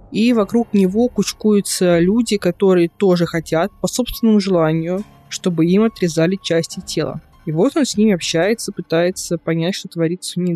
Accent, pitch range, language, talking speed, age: native, 165-200 Hz, Russian, 160 wpm, 20-39